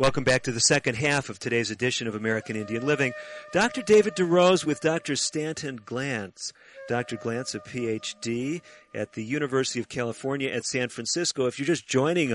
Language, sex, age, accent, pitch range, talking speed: English, male, 40-59, American, 110-130 Hz, 175 wpm